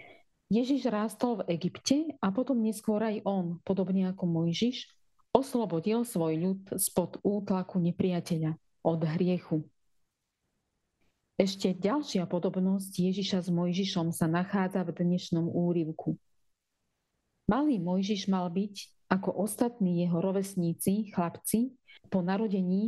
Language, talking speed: Slovak, 110 wpm